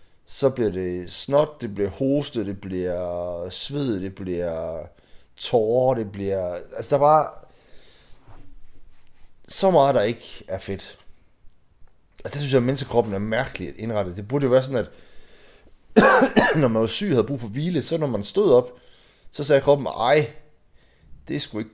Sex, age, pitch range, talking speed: male, 30-49, 85-135 Hz, 175 wpm